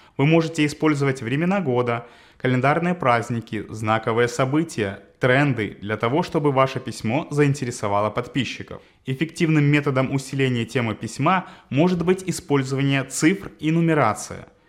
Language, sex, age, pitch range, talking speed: Russian, male, 20-39, 115-160 Hz, 115 wpm